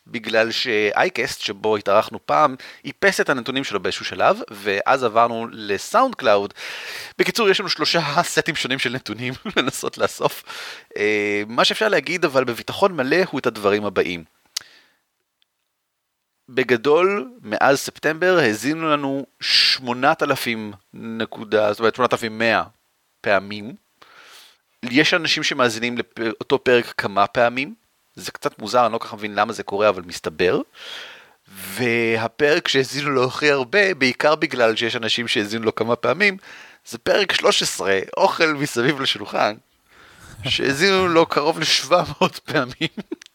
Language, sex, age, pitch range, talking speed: Hebrew, male, 30-49, 115-155 Hz, 120 wpm